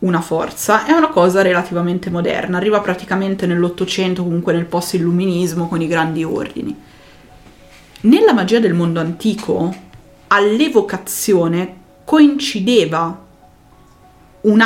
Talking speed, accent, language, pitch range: 105 wpm, native, Italian, 175-215 Hz